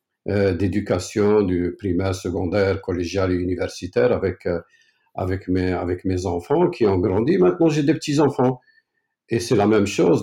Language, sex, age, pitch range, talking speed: French, male, 50-69, 90-110 Hz, 145 wpm